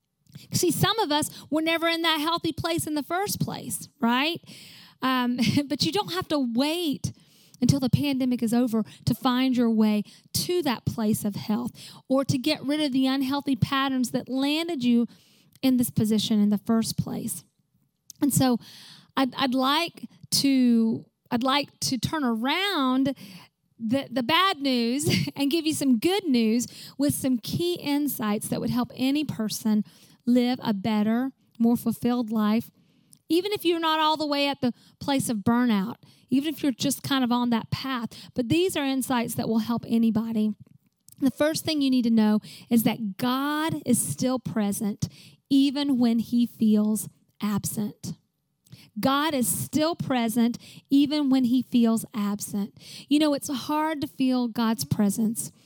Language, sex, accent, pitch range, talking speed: English, female, American, 215-275 Hz, 165 wpm